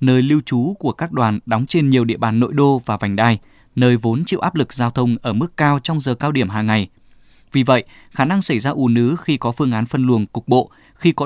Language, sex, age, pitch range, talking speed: Vietnamese, male, 20-39, 115-145 Hz, 265 wpm